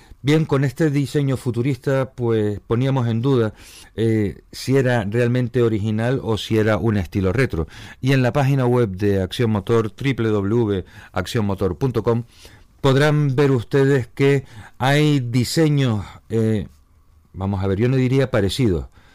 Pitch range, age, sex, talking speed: 95-125 Hz, 50-69, male, 135 wpm